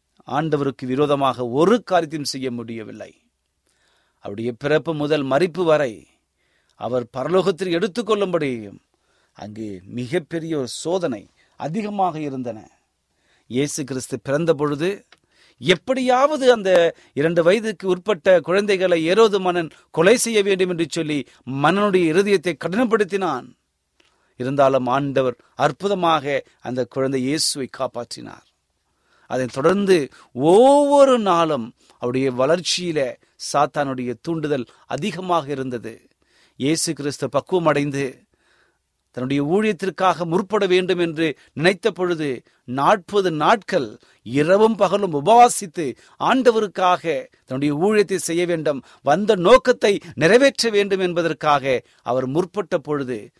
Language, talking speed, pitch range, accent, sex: Tamil, 90 wpm, 130-190 Hz, native, male